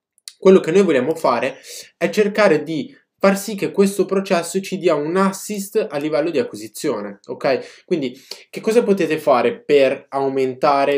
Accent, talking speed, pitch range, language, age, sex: native, 160 wpm, 125-190 Hz, Italian, 20-39, male